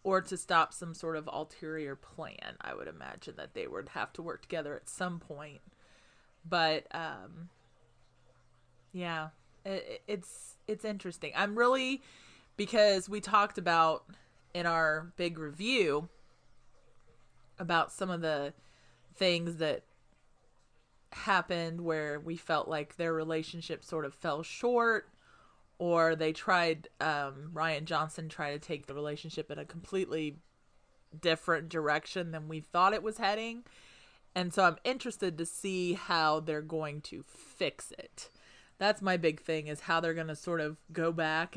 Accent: American